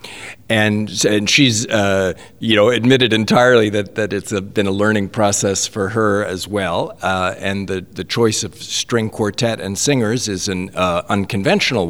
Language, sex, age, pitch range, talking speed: English, male, 50-69, 95-110 Hz, 170 wpm